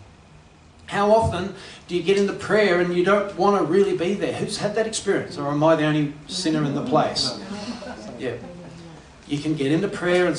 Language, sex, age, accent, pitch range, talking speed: English, male, 30-49, Australian, 135-185 Hz, 200 wpm